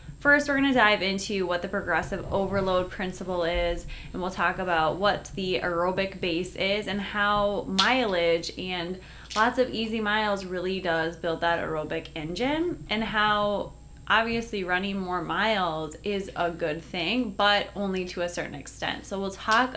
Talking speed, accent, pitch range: 160 wpm, American, 170-200 Hz